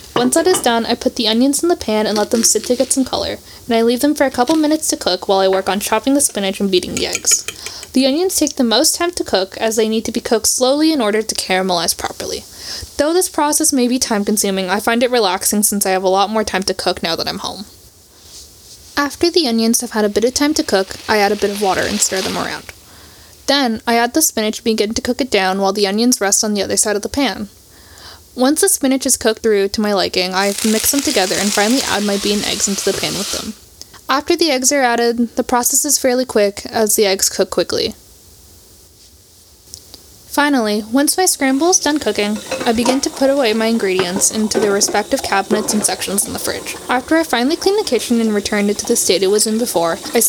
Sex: female